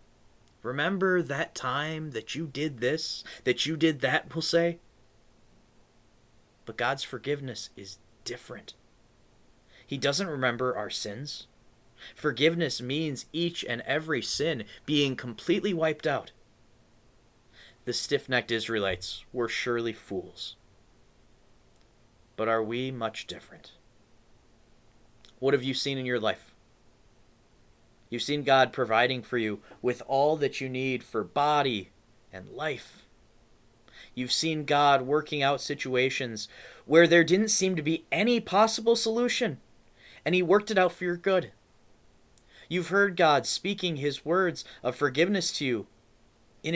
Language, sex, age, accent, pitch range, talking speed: English, male, 30-49, American, 120-160 Hz, 130 wpm